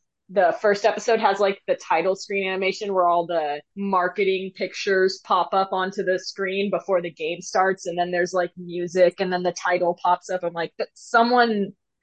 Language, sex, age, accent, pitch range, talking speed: English, female, 20-39, American, 170-205 Hz, 185 wpm